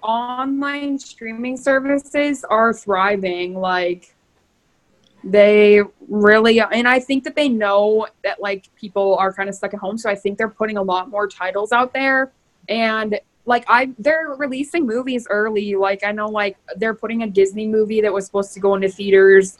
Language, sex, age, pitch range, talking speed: English, female, 20-39, 195-230 Hz, 175 wpm